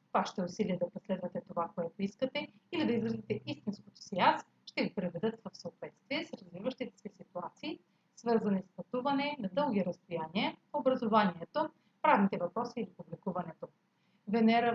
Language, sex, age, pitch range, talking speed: Bulgarian, female, 30-49, 185-250 Hz, 140 wpm